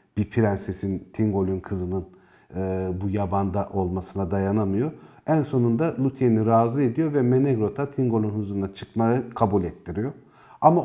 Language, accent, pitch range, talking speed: Turkish, native, 100-125 Hz, 120 wpm